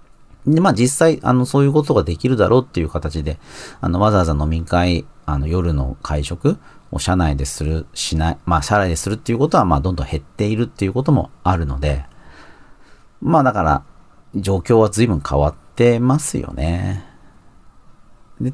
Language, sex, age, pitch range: Japanese, male, 40-59, 75-120 Hz